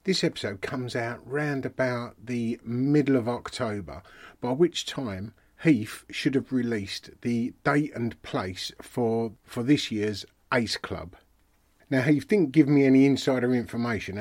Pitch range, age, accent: 105-130 Hz, 40-59, British